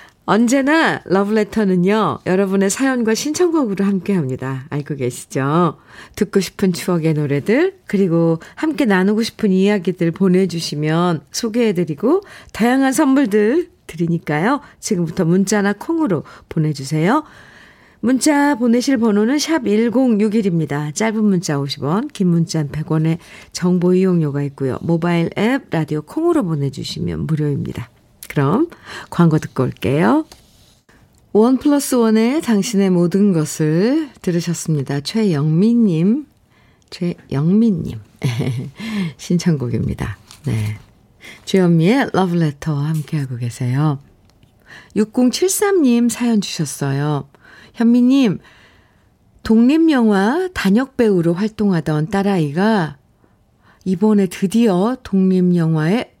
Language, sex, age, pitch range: Korean, female, 50-69, 160-225 Hz